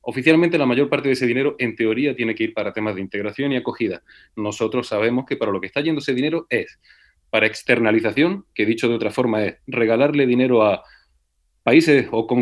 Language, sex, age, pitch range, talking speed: Spanish, male, 30-49, 110-140 Hz, 215 wpm